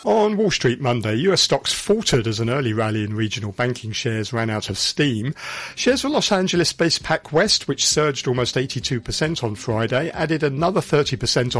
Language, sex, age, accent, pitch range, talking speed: English, male, 50-69, British, 115-160 Hz, 170 wpm